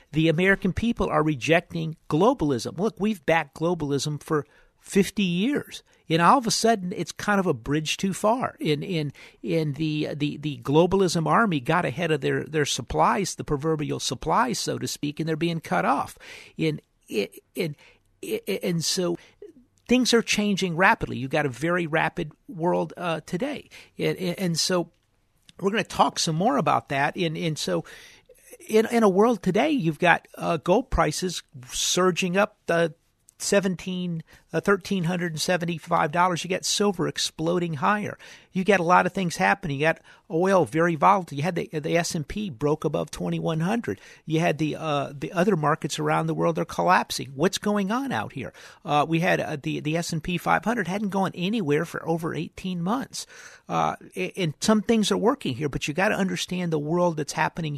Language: English